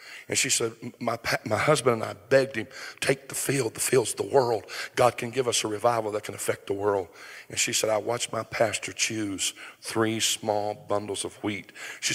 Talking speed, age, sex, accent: 210 wpm, 50-69, male, American